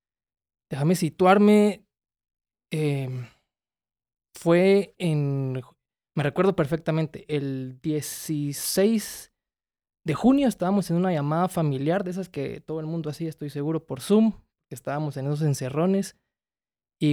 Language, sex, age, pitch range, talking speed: English, male, 20-39, 140-170 Hz, 115 wpm